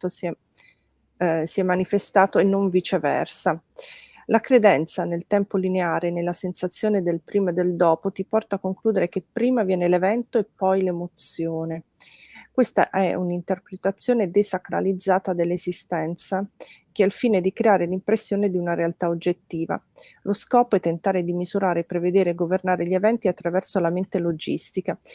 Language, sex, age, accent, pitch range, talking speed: Italian, female, 40-59, native, 175-195 Hz, 150 wpm